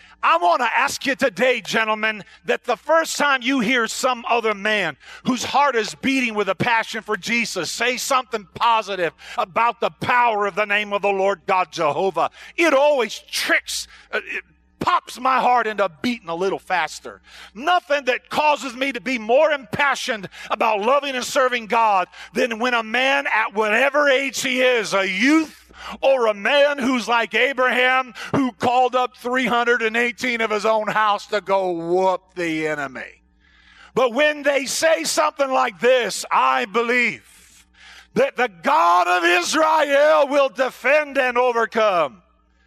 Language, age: English, 50-69